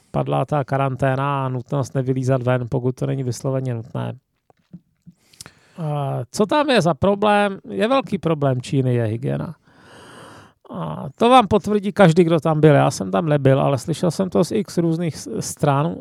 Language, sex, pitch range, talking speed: Czech, male, 135-180 Hz, 160 wpm